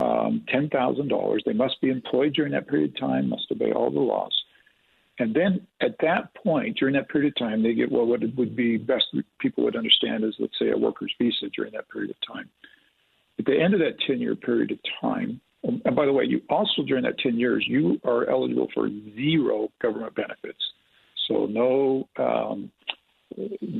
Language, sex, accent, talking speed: English, male, American, 190 wpm